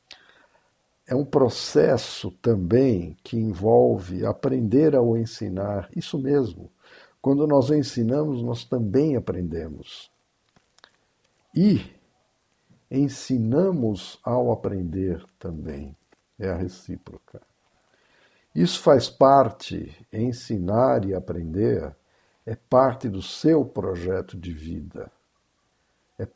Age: 60-79